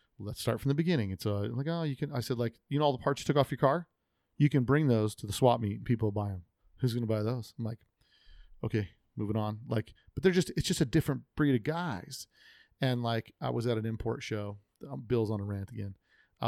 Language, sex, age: English, male, 40-59